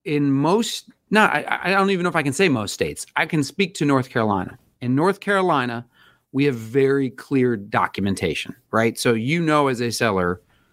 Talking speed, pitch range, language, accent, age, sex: 195 wpm, 120-160 Hz, English, American, 40-59, male